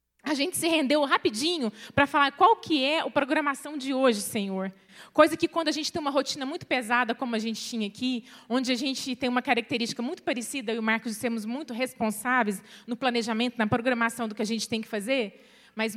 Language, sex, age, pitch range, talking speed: Portuguese, female, 20-39, 215-275 Hz, 205 wpm